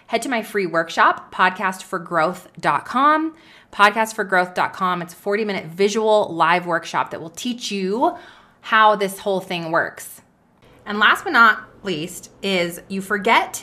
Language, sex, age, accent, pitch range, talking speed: English, female, 20-39, American, 185-235 Hz, 130 wpm